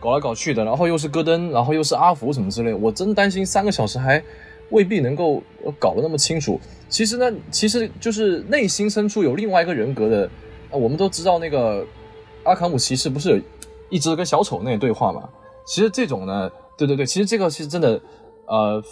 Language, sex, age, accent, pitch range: Chinese, male, 20-39, native, 130-205 Hz